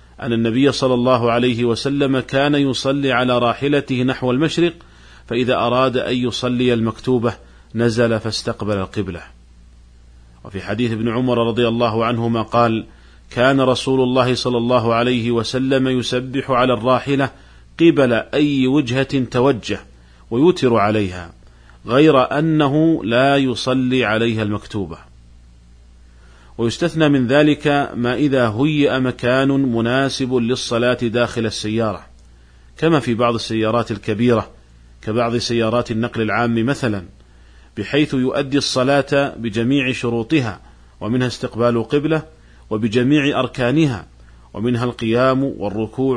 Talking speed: 110 wpm